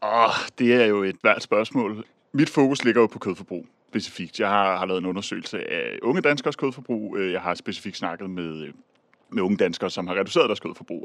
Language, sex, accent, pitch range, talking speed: Danish, male, native, 95-135 Hz, 195 wpm